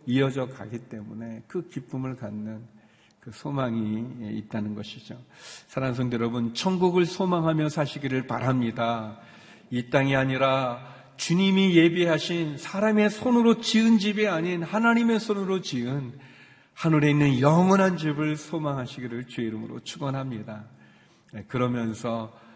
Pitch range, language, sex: 115-150 Hz, Korean, male